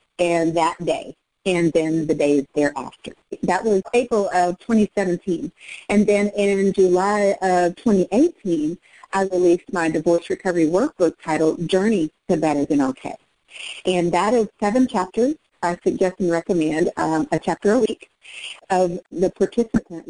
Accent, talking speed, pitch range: American, 145 wpm, 175-225 Hz